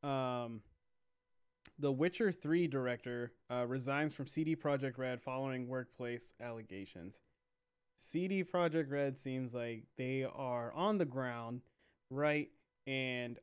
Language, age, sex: English, 20-39, male